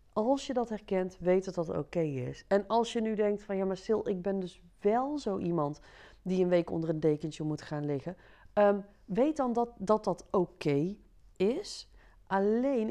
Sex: female